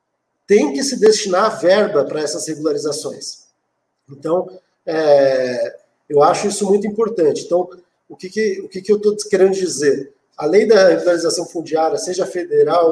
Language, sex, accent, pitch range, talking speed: Portuguese, male, Brazilian, 170-230 Hz, 145 wpm